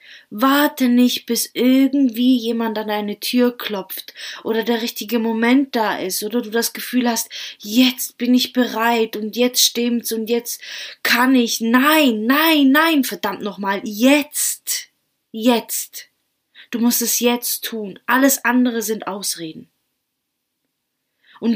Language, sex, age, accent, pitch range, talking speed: German, female, 20-39, German, 215-255 Hz, 135 wpm